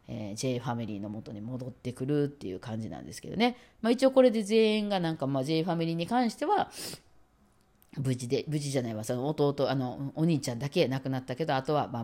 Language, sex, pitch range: Japanese, female, 125-165 Hz